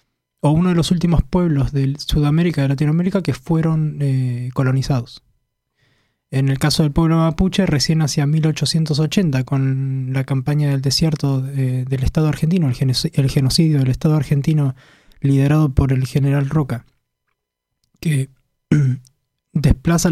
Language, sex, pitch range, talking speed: Spanish, male, 135-160 Hz, 130 wpm